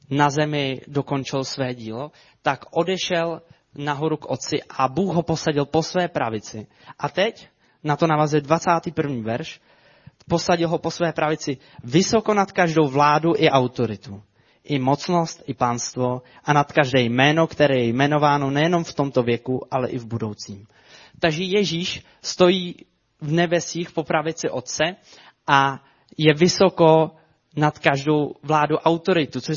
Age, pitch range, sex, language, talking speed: 20-39, 130-160 Hz, male, Czech, 140 wpm